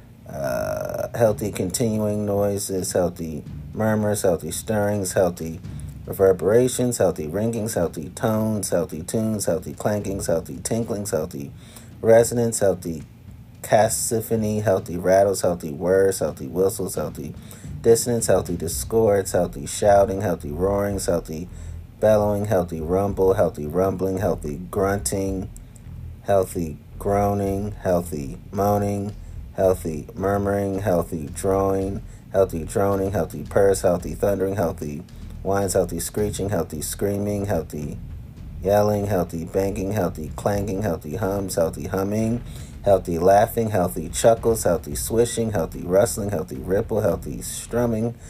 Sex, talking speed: male, 110 wpm